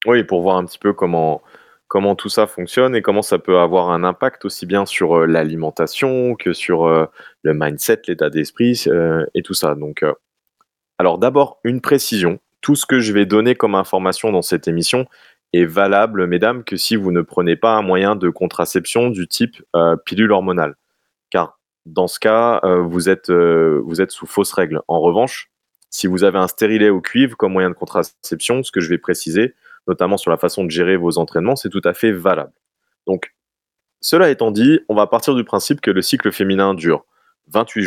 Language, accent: French, French